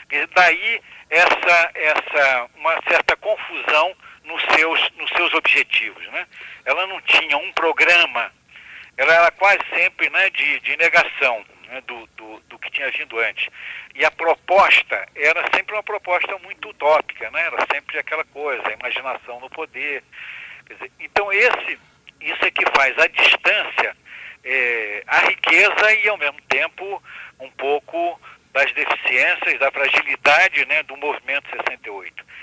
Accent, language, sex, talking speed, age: Brazilian, Portuguese, male, 145 wpm, 60-79